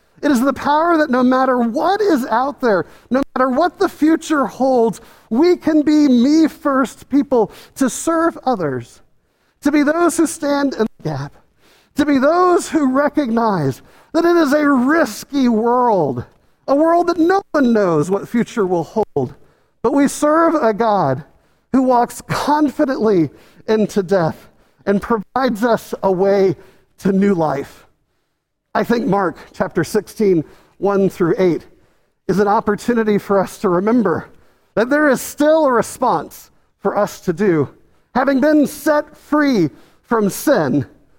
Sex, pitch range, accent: male, 190-285 Hz, American